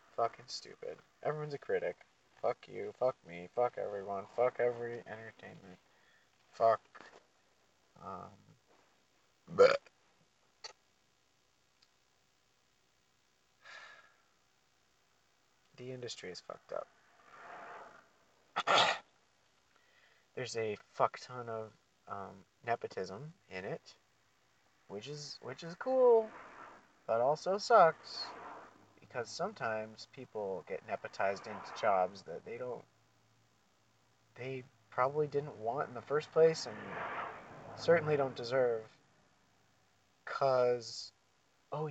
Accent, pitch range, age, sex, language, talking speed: American, 110-145 Hz, 30-49, male, English, 90 wpm